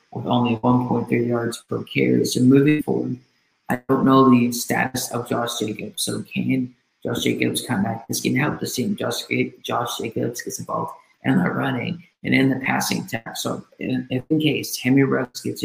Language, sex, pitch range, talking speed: English, male, 115-135 Hz, 190 wpm